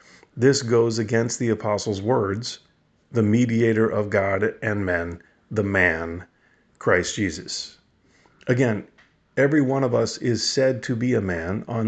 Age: 40-59